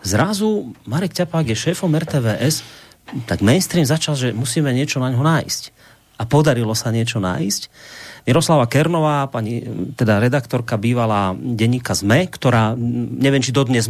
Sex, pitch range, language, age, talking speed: male, 110-145 Hz, Slovak, 40-59, 140 wpm